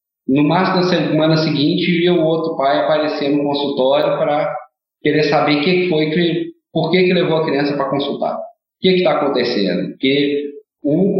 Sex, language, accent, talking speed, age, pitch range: male, Portuguese, Brazilian, 175 wpm, 40-59, 145-195 Hz